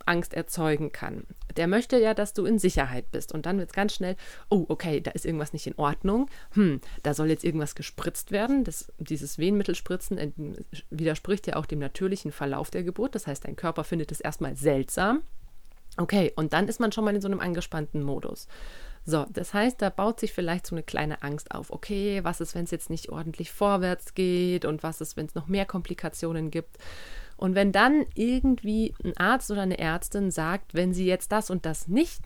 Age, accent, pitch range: 30-49, German, 155-200 Hz